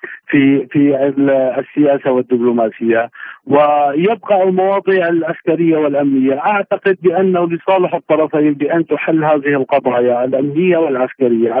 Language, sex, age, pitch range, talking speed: Arabic, male, 50-69, 135-155 Hz, 95 wpm